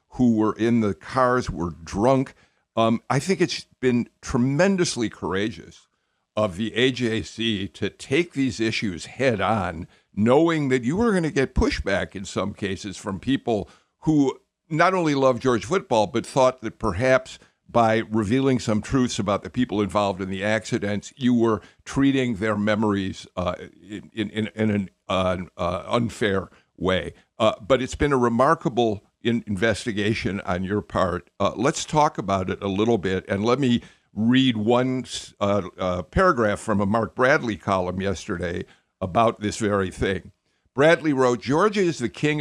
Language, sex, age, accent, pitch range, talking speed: English, male, 50-69, American, 100-130 Hz, 160 wpm